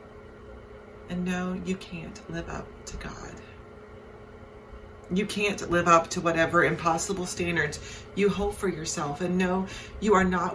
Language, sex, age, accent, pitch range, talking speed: English, female, 30-49, American, 135-180 Hz, 140 wpm